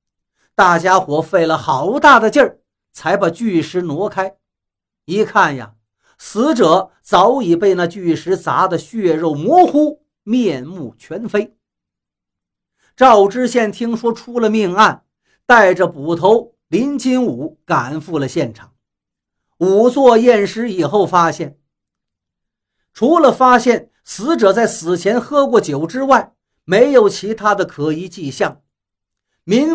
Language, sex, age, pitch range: Chinese, male, 50-69, 155-240 Hz